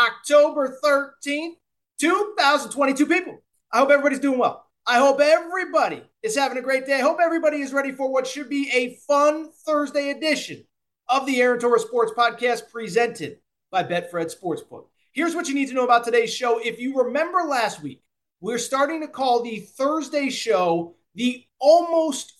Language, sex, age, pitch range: English, male, 30-49, 225-285 Hz